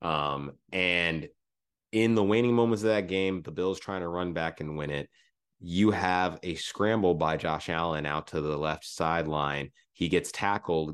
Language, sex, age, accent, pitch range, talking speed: English, male, 30-49, American, 80-105 Hz, 180 wpm